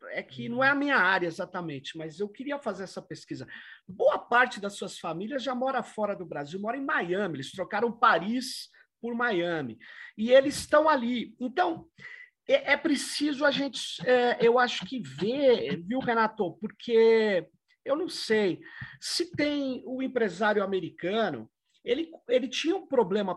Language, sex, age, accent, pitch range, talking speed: Portuguese, male, 50-69, Brazilian, 190-280 Hz, 160 wpm